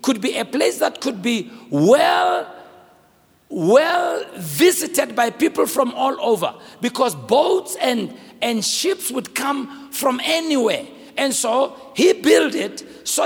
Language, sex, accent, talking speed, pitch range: English, male, South African, 135 wpm, 230-285 Hz